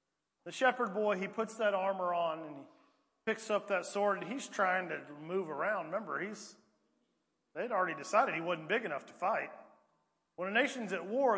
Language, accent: English, American